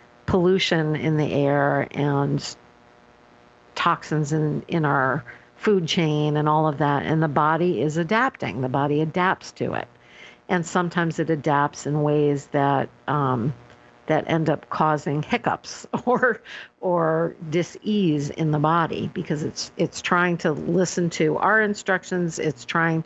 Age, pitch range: 50-69, 150-180 Hz